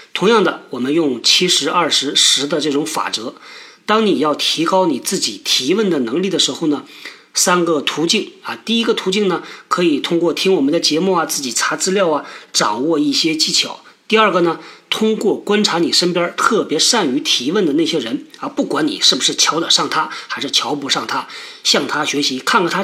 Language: Chinese